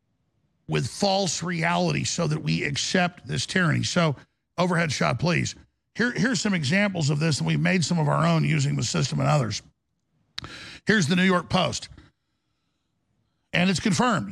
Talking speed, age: 165 wpm, 50-69